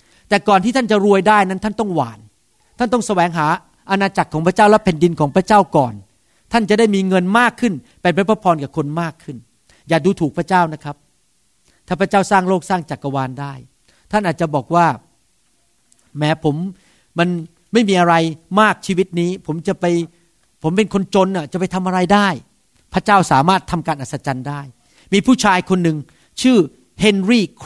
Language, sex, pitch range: Thai, male, 150-210 Hz